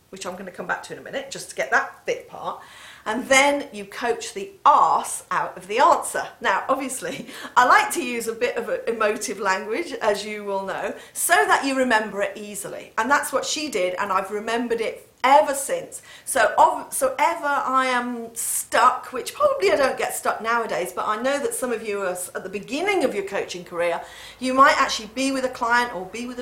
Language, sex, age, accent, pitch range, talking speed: English, female, 40-59, British, 210-285 Hz, 220 wpm